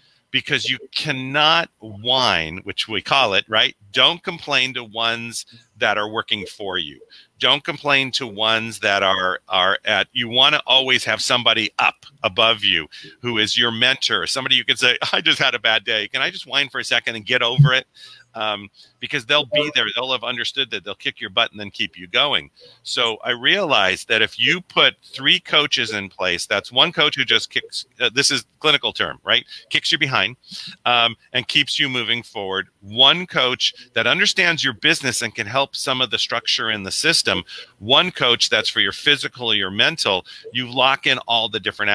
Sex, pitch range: male, 110-140 Hz